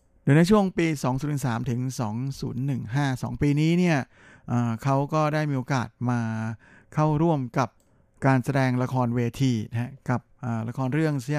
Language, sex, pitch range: Thai, male, 115-135 Hz